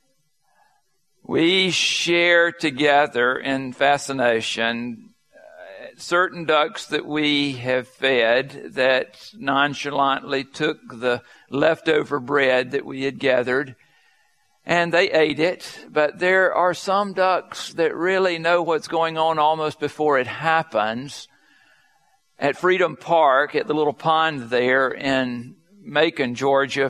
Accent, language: American, English